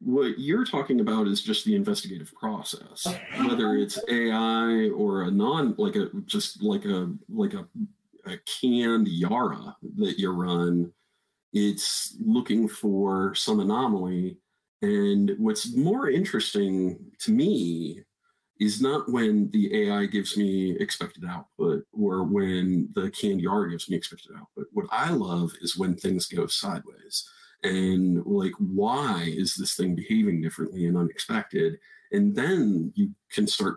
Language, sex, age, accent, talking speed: English, male, 40-59, American, 140 wpm